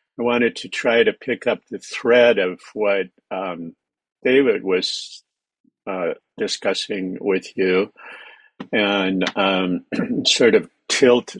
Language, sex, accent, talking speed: English, male, American, 120 wpm